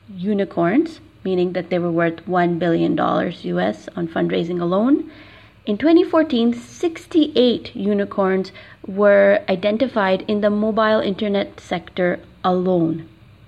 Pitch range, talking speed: 180-220 Hz, 105 wpm